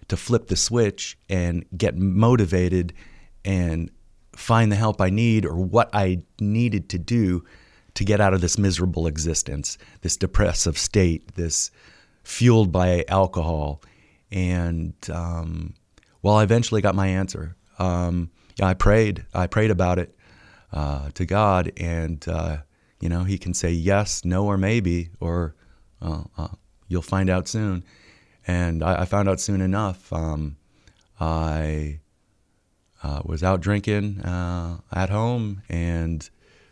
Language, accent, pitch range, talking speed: English, American, 85-100 Hz, 140 wpm